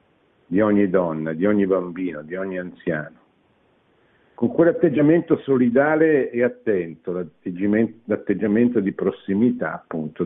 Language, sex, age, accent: Italian, male, 60-79, native